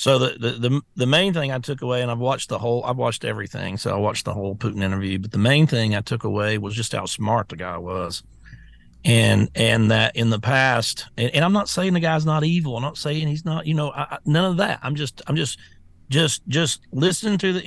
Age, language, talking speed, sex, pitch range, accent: 40-59, English, 255 wpm, male, 115-165 Hz, American